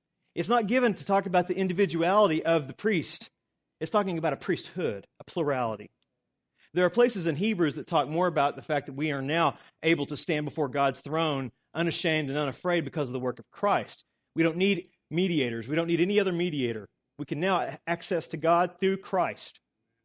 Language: English